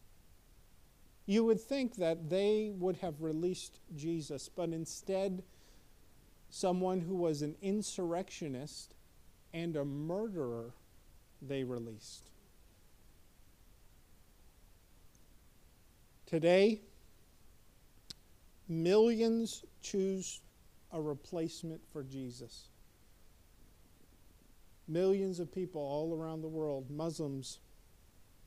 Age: 50-69